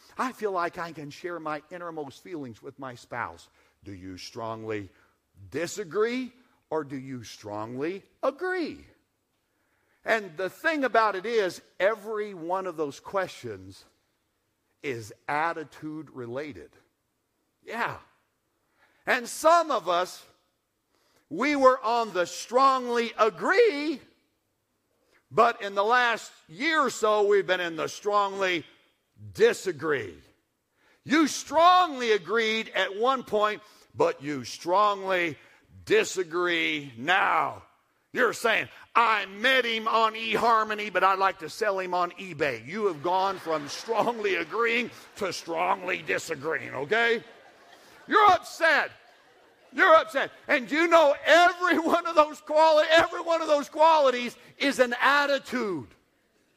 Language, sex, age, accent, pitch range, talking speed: English, male, 50-69, American, 175-285 Hz, 125 wpm